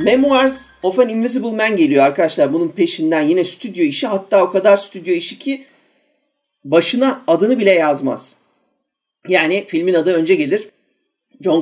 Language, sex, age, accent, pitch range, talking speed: Turkish, male, 40-59, native, 180-285 Hz, 145 wpm